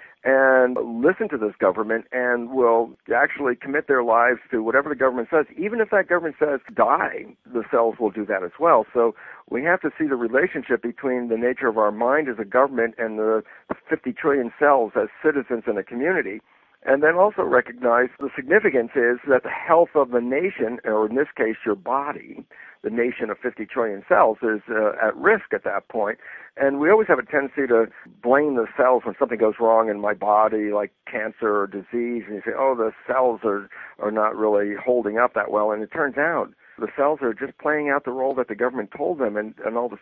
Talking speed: 215 wpm